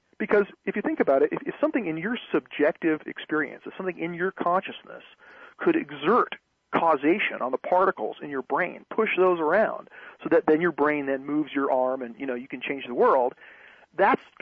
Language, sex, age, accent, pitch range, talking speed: English, male, 40-59, American, 140-210 Hz, 195 wpm